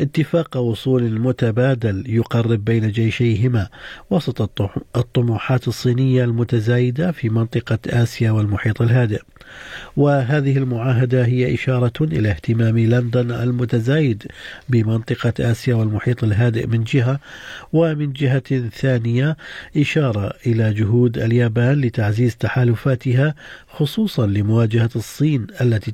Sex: male